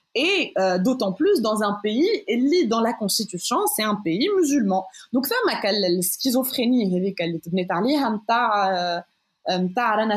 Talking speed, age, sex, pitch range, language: 155 wpm, 20-39, female, 185-270 Hz, Arabic